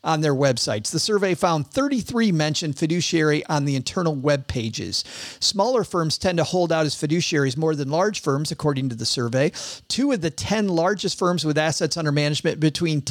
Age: 40-59